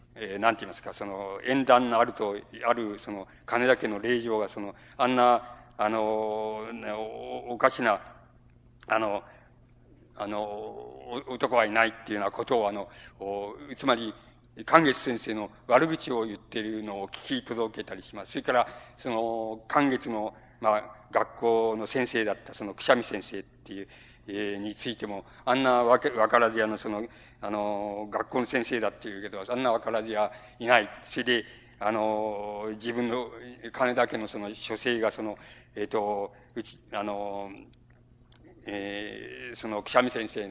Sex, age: male, 60-79